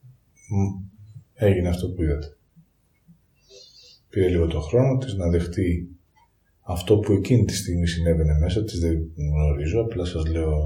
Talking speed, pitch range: 135 wpm, 85-110 Hz